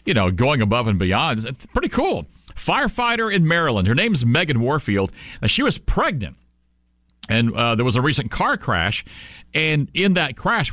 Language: English